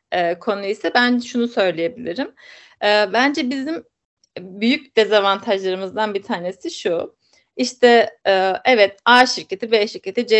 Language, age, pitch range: Turkish, 30-49, 195-245 Hz